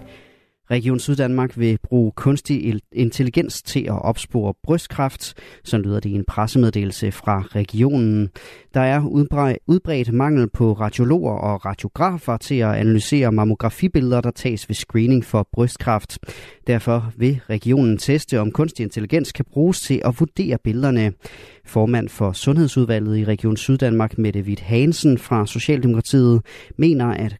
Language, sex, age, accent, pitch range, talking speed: Danish, male, 30-49, native, 110-140 Hz, 135 wpm